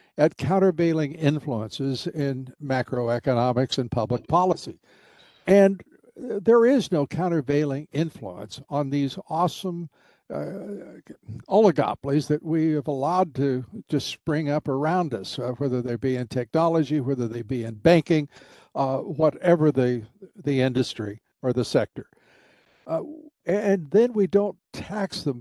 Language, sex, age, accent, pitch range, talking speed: English, male, 60-79, American, 140-180 Hz, 130 wpm